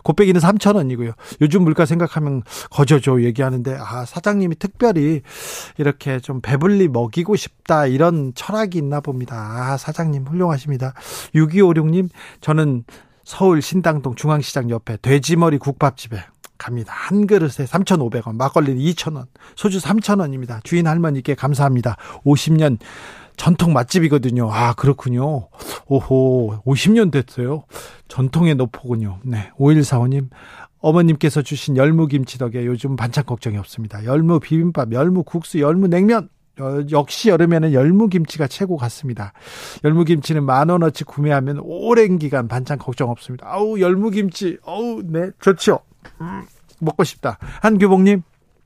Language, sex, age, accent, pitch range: Korean, male, 40-59, native, 130-170 Hz